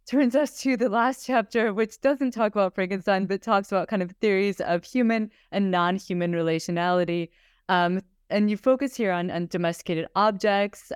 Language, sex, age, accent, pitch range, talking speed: English, female, 20-39, American, 175-210 Hz, 170 wpm